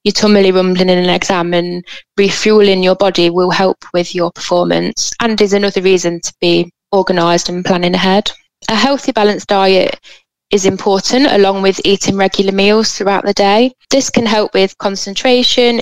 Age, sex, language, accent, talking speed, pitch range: 10-29, female, English, British, 165 wpm, 180-205 Hz